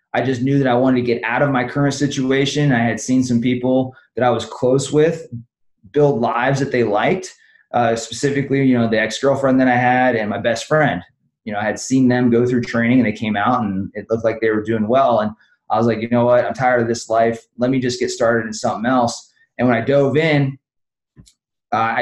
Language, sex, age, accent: English, male, 20-39, American